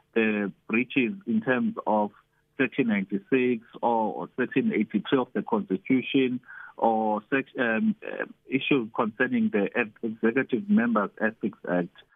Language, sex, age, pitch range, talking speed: English, male, 50-69, 115-150 Hz, 110 wpm